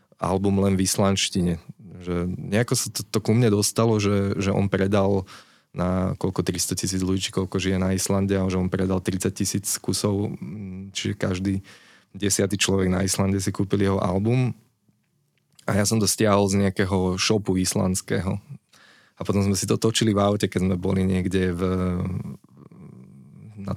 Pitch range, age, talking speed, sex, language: 95-105 Hz, 20-39, 165 wpm, male, Slovak